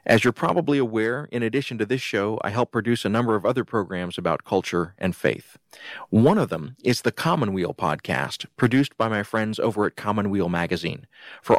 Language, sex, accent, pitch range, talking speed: English, male, American, 100-120 Hz, 190 wpm